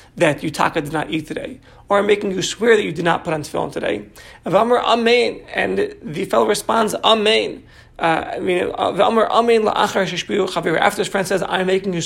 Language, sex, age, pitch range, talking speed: English, male, 40-59, 155-210 Hz, 205 wpm